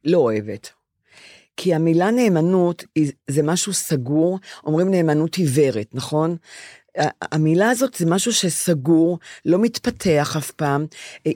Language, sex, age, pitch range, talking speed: Hebrew, female, 40-59, 145-180 Hz, 115 wpm